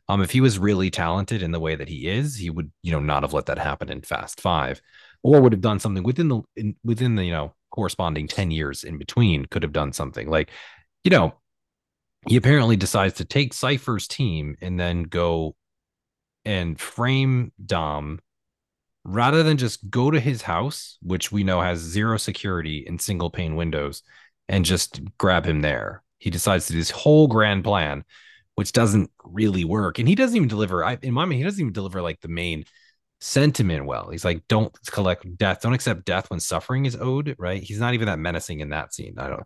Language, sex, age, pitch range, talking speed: English, male, 30-49, 85-125 Hz, 205 wpm